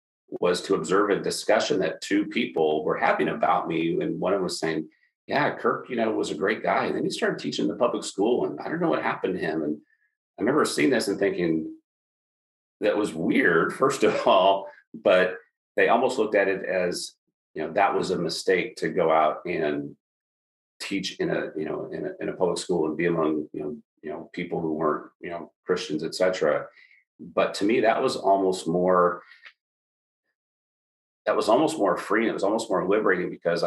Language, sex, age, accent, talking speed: English, male, 40-59, American, 210 wpm